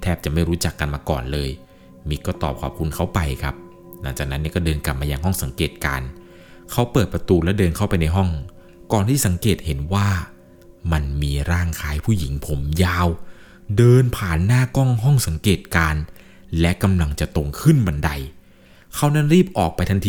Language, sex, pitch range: Thai, male, 80-110 Hz